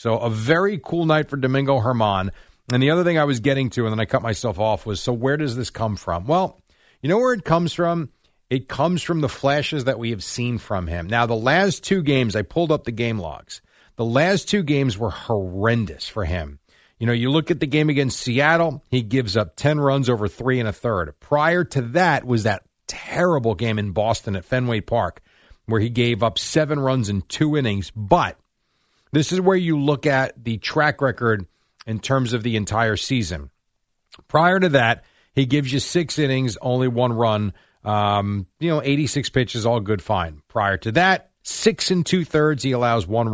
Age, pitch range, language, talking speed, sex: 40-59, 110-150 Hz, English, 205 wpm, male